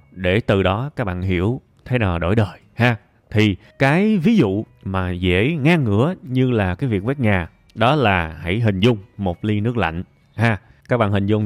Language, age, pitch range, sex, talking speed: Vietnamese, 20-39, 95-125 Hz, male, 205 wpm